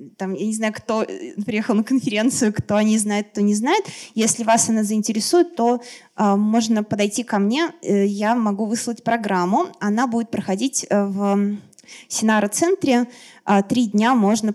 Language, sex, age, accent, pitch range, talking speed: Russian, female, 20-39, native, 205-240 Hz, 160 wpm